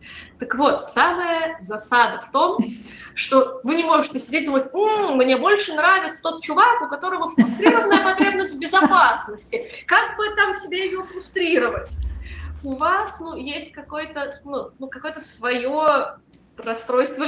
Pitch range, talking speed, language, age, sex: 255-345 Hz, 140 wpm, Russian, 20-39, female